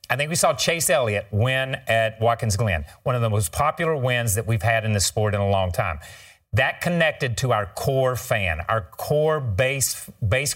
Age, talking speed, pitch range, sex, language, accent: 40-59, 205 wpm, 105-140 Hz, male, English, American